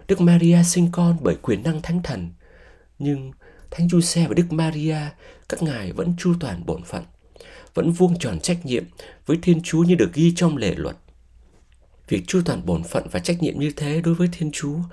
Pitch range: 110-175 Hz